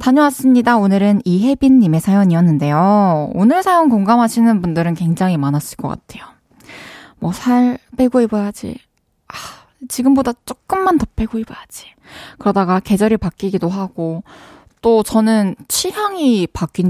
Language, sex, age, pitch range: Korean, female, 20-39, 180-255 Hz